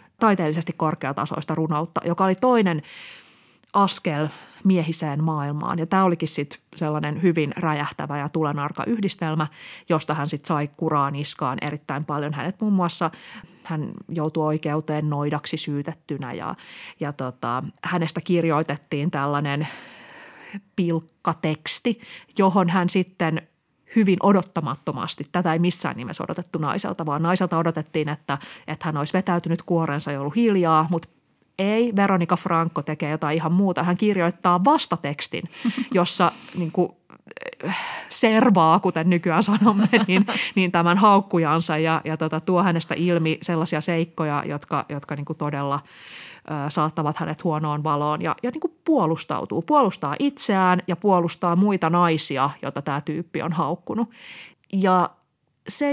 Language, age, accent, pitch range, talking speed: Finnish, 30-49, native, 155-185 Hz, 135 wpm